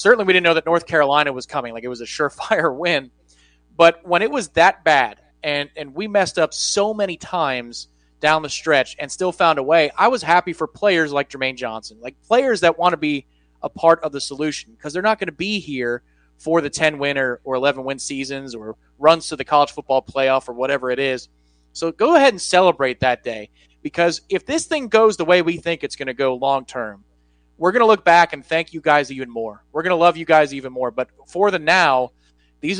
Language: English